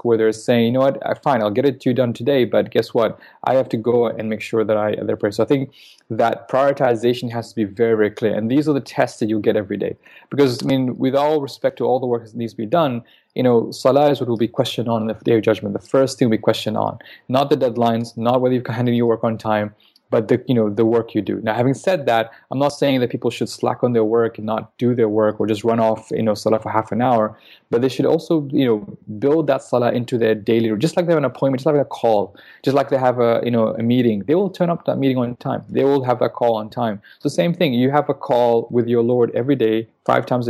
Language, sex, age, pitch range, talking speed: English, male, 20-39, 110-135 Hz, 285 wpm